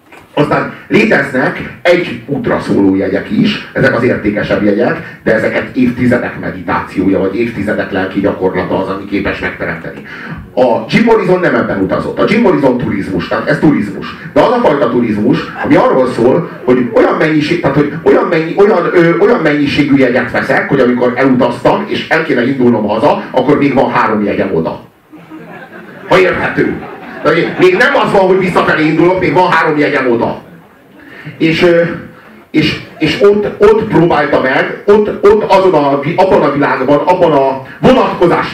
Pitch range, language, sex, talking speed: 125-180 Hz, Hungarian, male, 160 wpm